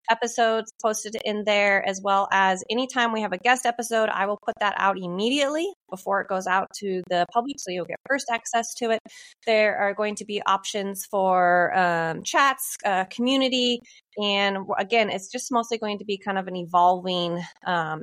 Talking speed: 190 wpm